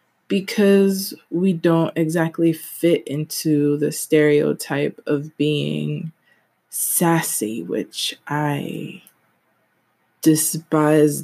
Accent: American